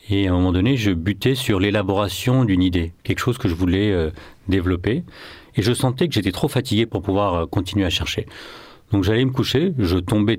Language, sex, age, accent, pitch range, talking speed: French, male, 40-59, French, 95-130 Hz, 215 wpm